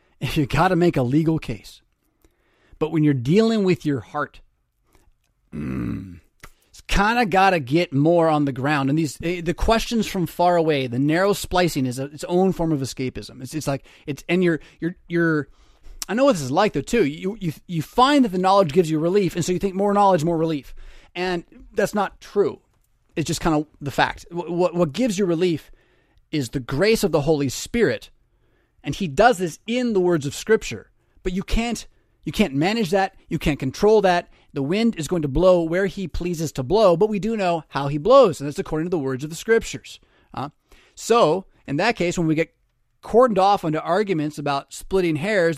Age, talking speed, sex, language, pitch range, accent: 30-49, 210 wpm, male, English, 145-205 Hz, American